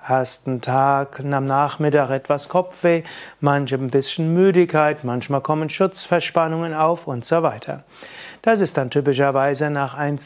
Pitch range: 140-170 Hz